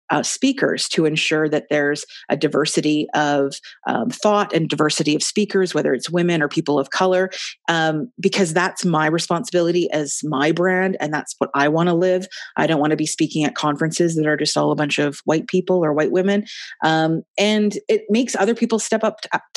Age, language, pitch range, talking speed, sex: 30-49, English, 155-190 Hz, 200 wpm, female